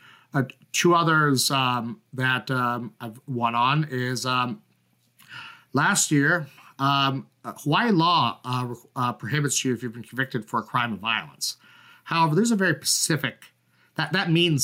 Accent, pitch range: American, 120-150 Hz